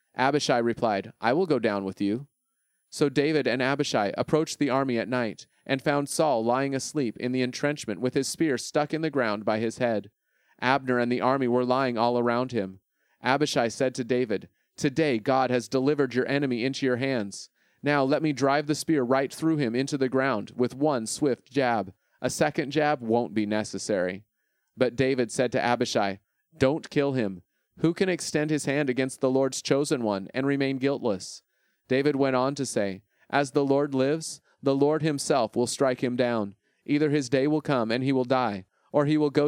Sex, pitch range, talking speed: male, 120-145 Hz, 195 wpm